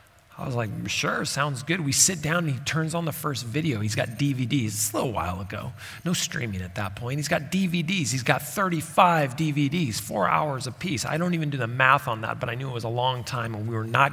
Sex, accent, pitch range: male, American, 120-170 Hz